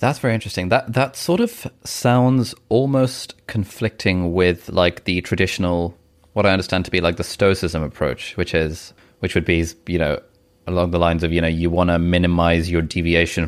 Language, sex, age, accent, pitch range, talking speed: English, male, 20-39, British, 85-100 Hz, 185 wpm